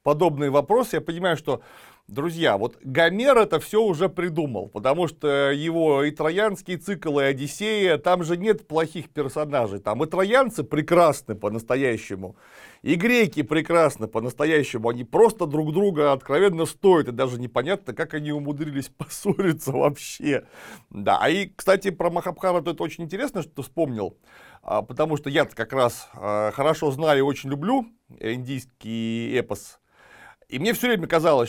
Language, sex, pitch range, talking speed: Russian, male, 130-175 Hz, 145 wpm